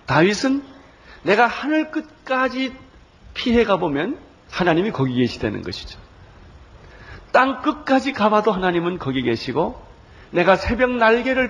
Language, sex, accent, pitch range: Korean, male, native, 125-200 Hz